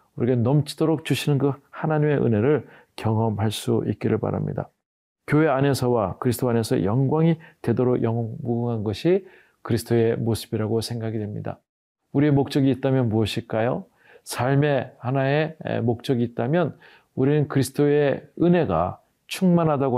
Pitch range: 115-145 Hz